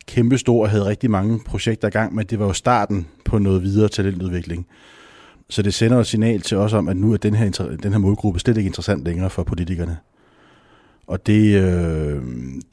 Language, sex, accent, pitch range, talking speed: Danish, male, native, 85-105 Hz, 205 wpm